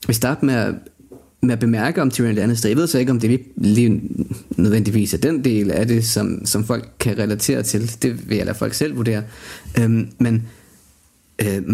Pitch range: 105-125 Hz